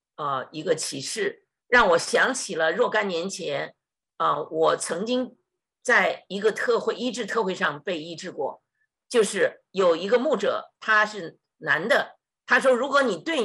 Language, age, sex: Chinese, 50-69, female